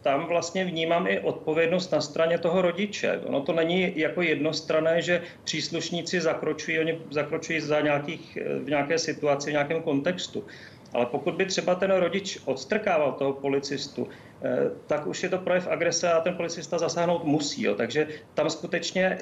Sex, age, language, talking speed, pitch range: male, 40-59, Czech, 160 wpm, 150-170 Hz